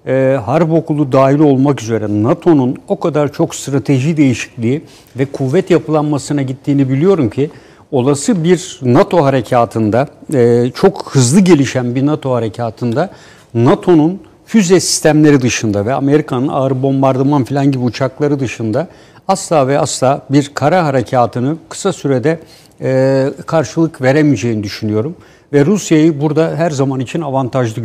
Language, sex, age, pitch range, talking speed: Turkish, male, 60-79, 125-160 Hz, 130 wpm